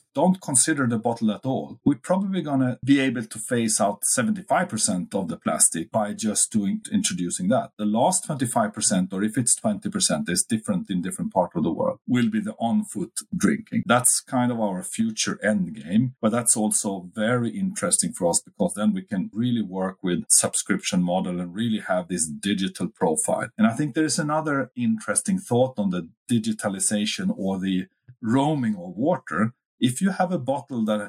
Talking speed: 185 wpm